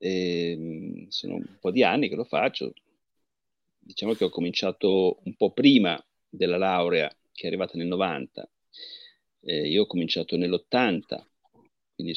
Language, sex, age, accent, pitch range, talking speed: Italian, male, 40-59, native, 95-145 Hz, 135 wpm